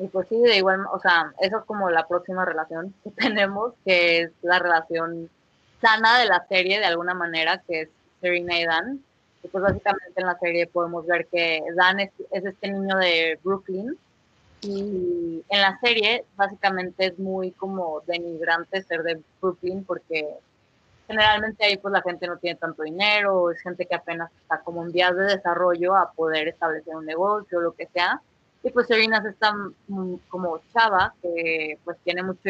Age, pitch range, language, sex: 20-39, 170-195 Hz, Spanish, female